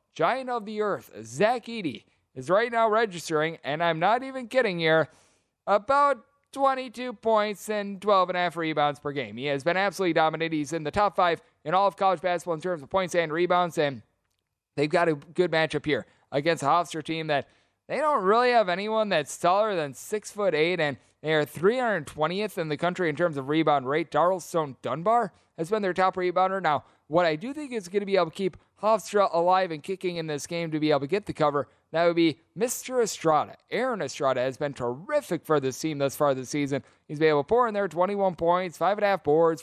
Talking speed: 220 wpm